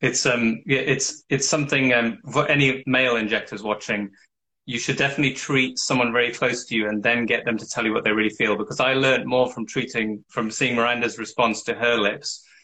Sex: male